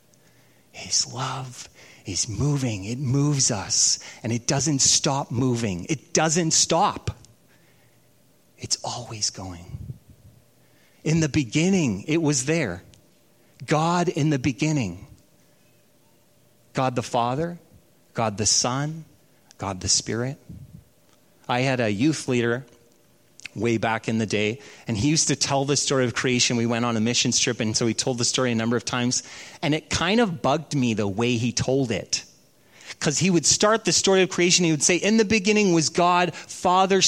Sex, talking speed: male, 160 wpm